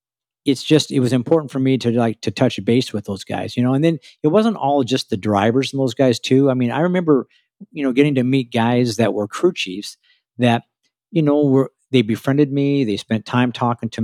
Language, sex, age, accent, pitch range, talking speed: English, male, 50-69, American, 105-130 Hz, 235 wpm